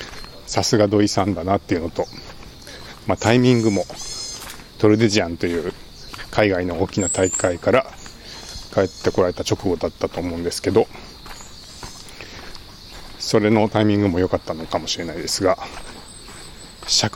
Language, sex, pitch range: Japanese, male, 95-110 Hz